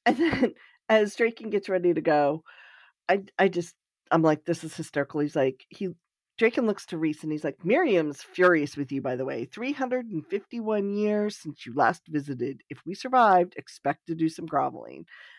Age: 40-59